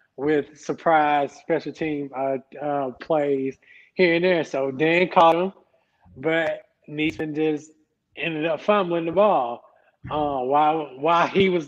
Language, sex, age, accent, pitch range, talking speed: English, male, 20-39, American, 145-175 Hz, 150 wpm